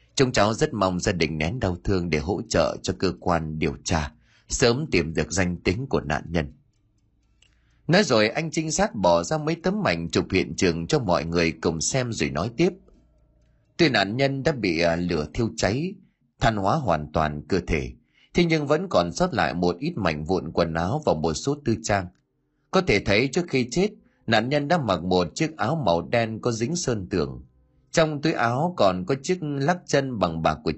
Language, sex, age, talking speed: Vietnamese, male, 30-49, 210 wpm